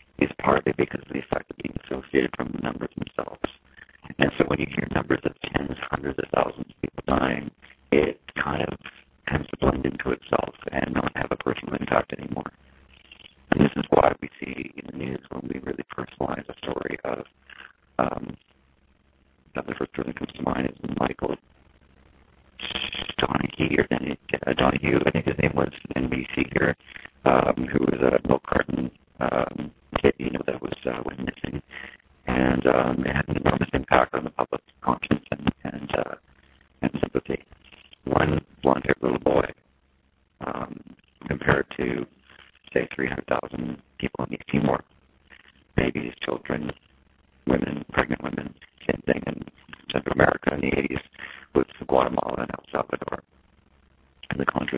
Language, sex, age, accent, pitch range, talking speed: English, male, 50-69, American, 65-70 Hz, 160 wpm